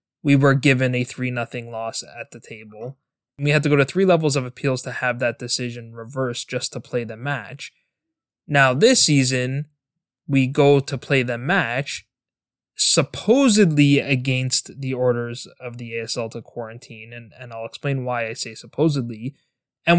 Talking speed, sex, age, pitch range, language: 165 wpm, male, 20-39, 120-140 Hz, English